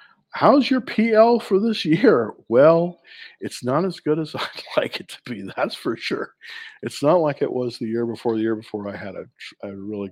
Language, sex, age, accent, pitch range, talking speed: English, male, 50-69, American, 105-150 Hz, 215 wpm